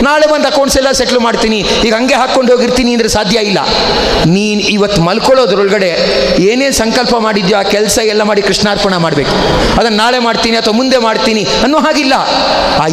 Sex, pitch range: male, 210-270 Hz